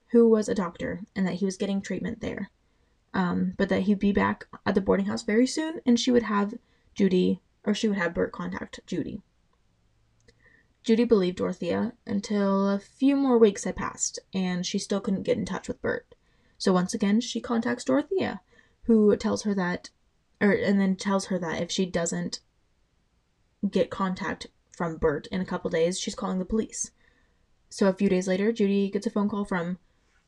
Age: 20-39